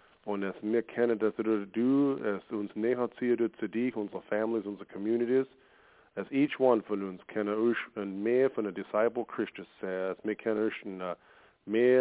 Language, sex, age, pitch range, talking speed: English, male, 40-59, 105-120 Hz, 140 wpm